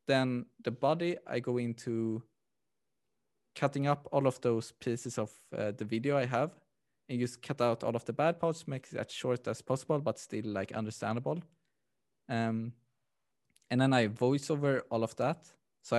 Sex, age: male, 20-39